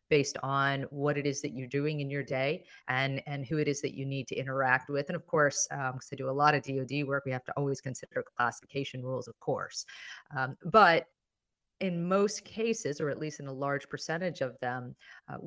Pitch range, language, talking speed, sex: 130-160 Hz, English, 225 wpm, female